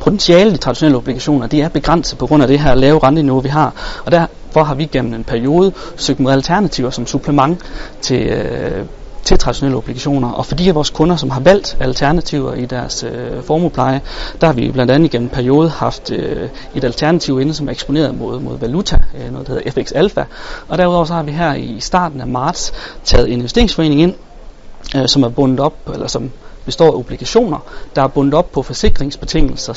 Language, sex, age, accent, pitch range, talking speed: Danish, male, 30-49, native, 130-160 Hz, 200 wpm